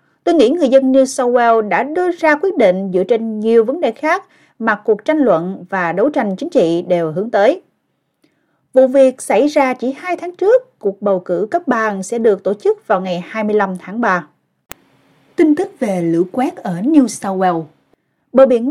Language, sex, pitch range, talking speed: Vietnamese, female, 195-275 Hz, 200 wpm